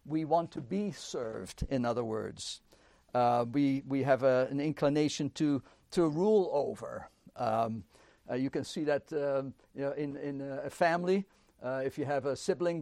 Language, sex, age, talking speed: English, male, 60-79, 180 wpm